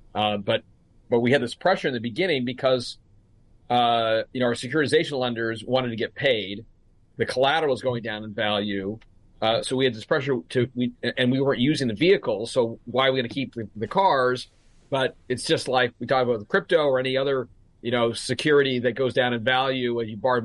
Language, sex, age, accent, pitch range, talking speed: English, male, 40-59, American, 115-135 Hz, 220 wpm